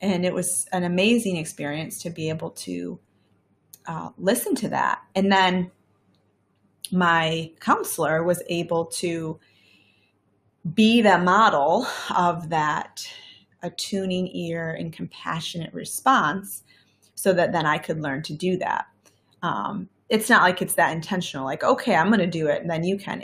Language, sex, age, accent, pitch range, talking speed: English, female, 30-49, American, 160-185 Hz, 145 wpm